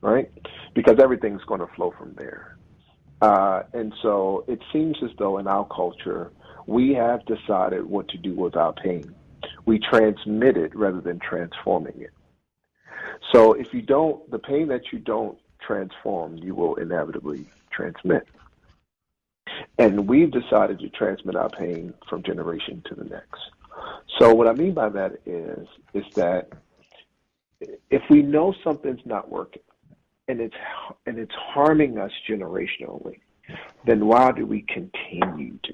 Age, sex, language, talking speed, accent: 50-69, male, English, 150 wpm, American